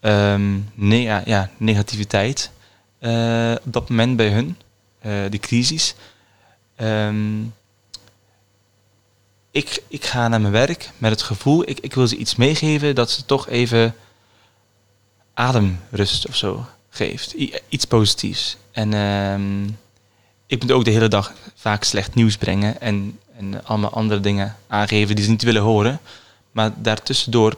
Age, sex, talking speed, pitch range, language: 20-39, male, 140 wpm, 100-120 Hz, Dutch